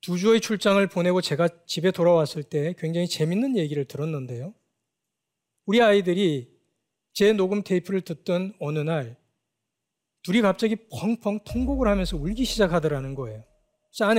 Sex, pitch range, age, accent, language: male, 155-210 Hz, 40-59, native, Korean